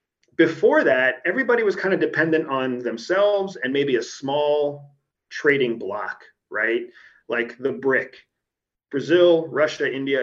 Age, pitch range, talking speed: 30-49, 125-170 Hz, 130 wpm